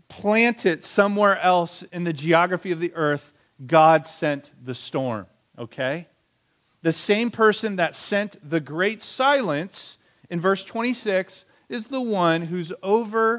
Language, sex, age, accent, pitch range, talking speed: English, male, 40-59, American, 130-185 Hz, 140 wpm